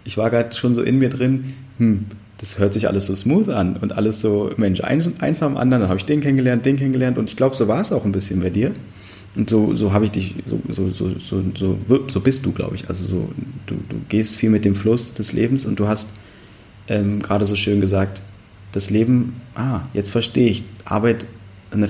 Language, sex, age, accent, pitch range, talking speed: German, male, 30-49, German, 95-115 Hz, 225 wpm